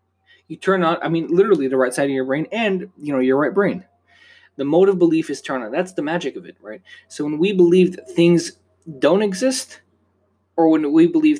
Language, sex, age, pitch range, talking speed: English, male, 20-39, 130-190 Hz, 225 wpm